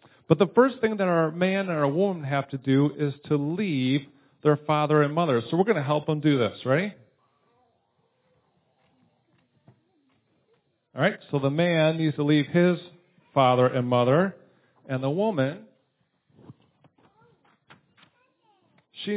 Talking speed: 140 wpm